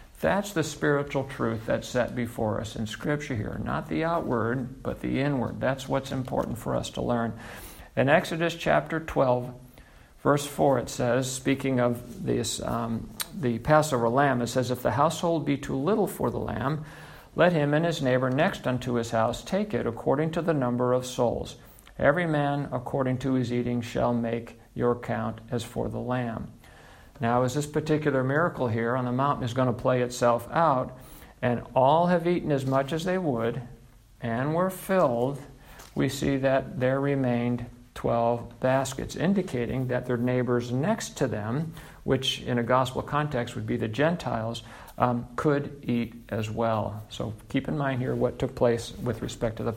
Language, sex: English, male